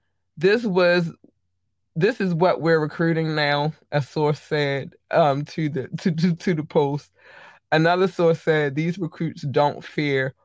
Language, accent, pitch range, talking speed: English, American, 135-170 Hz, 150 wpm